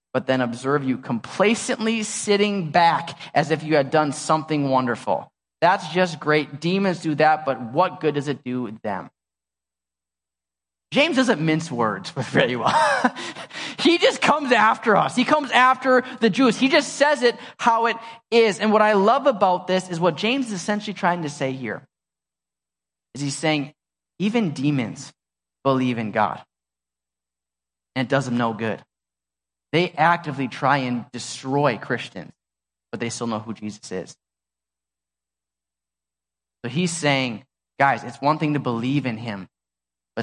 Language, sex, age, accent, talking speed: English, male, 20-39, American, 155 wpm